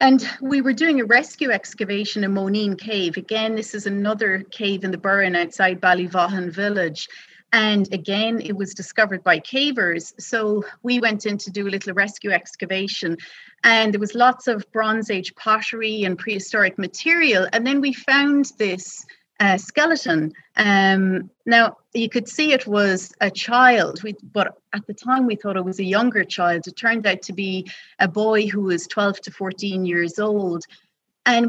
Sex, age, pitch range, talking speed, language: female, 30-49, 195-235 Hz, 175 wpm, English